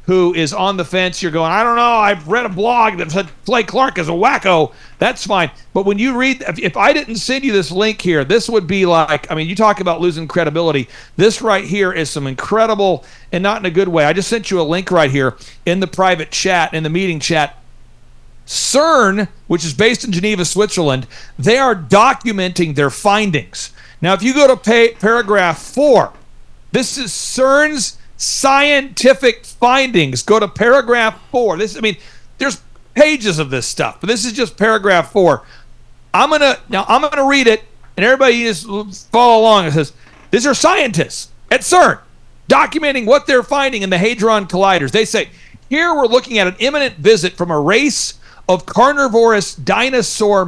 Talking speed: 190 wpm